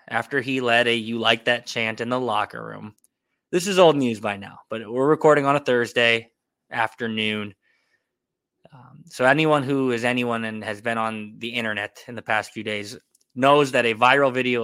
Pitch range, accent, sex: 110-135 Hz, American, male